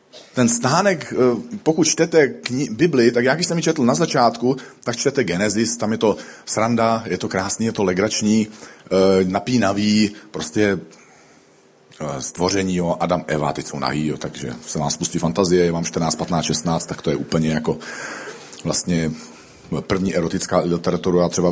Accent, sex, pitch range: native, male, 90-125 Hz